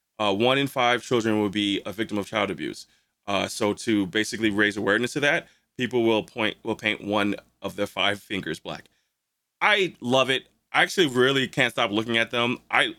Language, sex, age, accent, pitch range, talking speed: English, male, 20-39, American, 110-140 Hz, 200 wpm